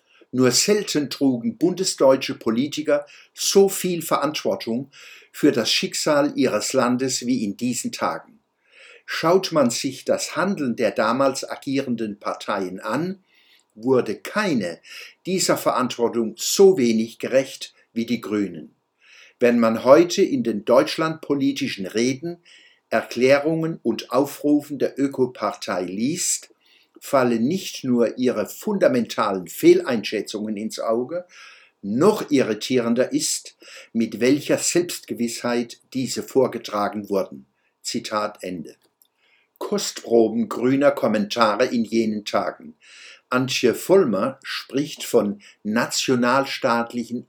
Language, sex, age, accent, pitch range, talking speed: German, male, 60-79, German, 115-175 Hz, 100 wpm